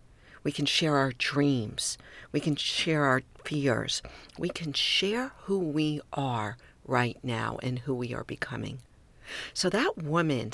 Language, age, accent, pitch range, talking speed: English, 50-69, American, 125-155 Hz, 150 wpm